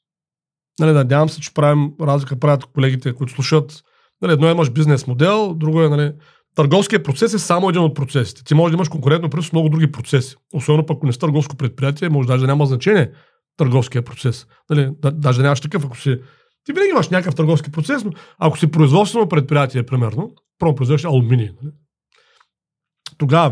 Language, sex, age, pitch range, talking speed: Bulgarian, male, 40-59, 135-165 Hz, 185 wpm